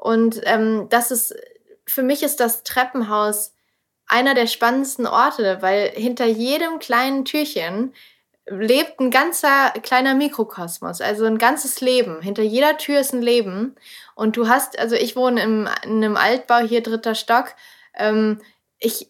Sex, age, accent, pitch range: female, 20-39, German, 220-260 Hz